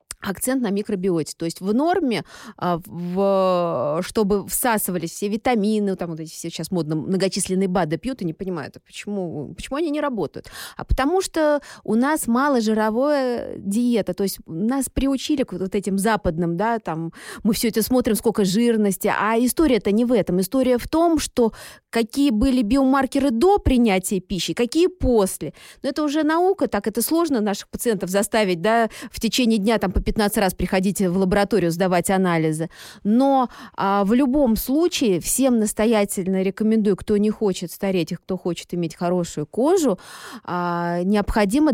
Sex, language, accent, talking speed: female, Russian, native, 165 wpm